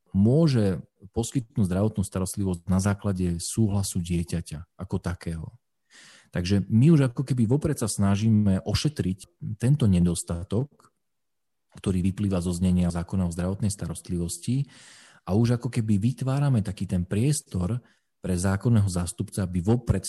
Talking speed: 125 wpm